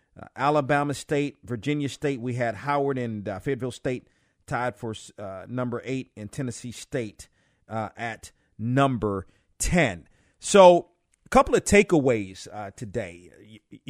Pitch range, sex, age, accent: 110-135 Hz, male, 40-59, American